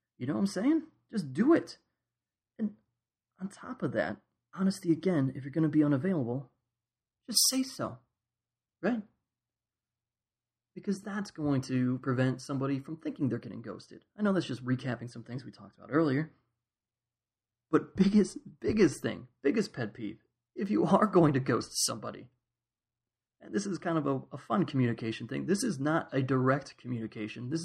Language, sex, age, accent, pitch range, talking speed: English, male, 30-49, American, 120-175 Hz, 170 wpm